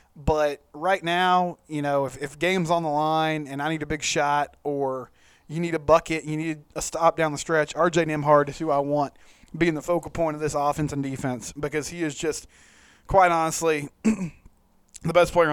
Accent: American